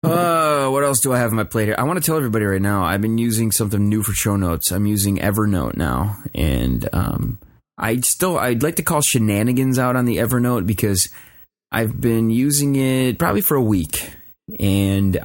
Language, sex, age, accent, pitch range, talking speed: English, male, 20-39, American, 95-120 Hz, 210 wpm